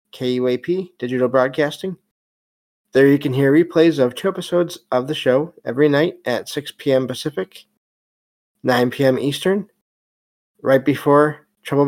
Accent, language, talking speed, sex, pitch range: American, English, 130 wpm, male, 125-150 Hz